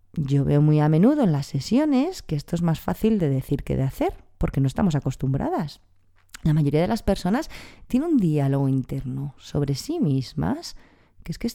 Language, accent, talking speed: Spanish, Spanish, 195 wpm